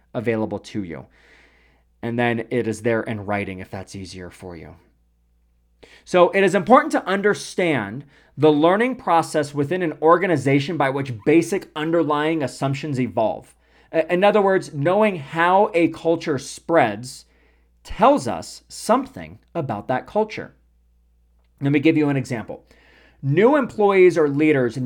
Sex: male